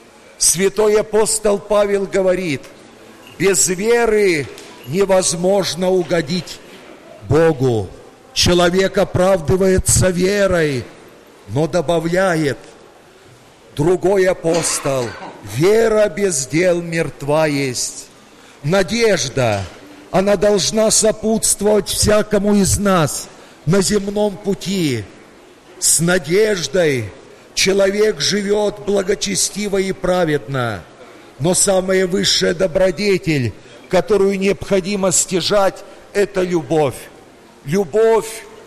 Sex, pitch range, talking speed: male, 165-205 Hz, 75 wpm